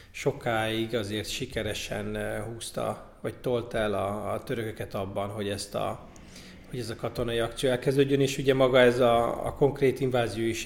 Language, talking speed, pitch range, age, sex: Hungarian, 160 wpm, 105-130 Hz, 30-49, male